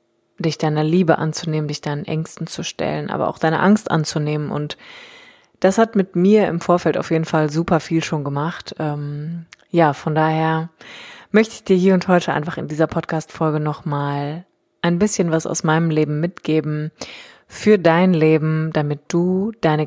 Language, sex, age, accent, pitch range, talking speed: German, female, 20-39, German, 155-180 Hz, 170 wpm